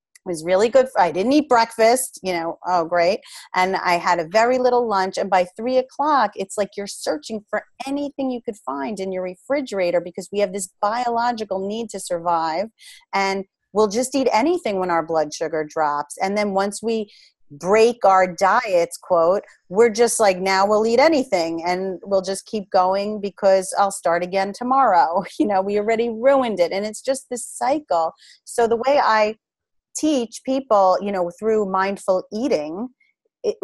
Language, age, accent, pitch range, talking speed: English, 30-49, American, 190-245 Hz, 180 wpm